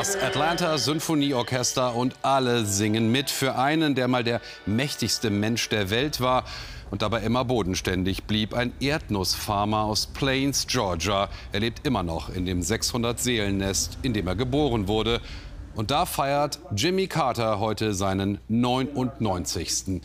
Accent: German